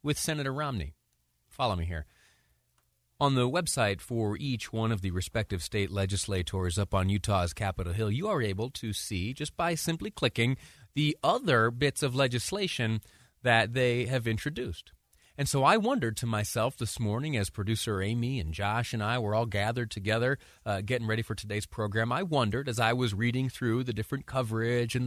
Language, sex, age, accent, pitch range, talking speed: English, male, 30-49, American, 105-140 Hz, 180 wpm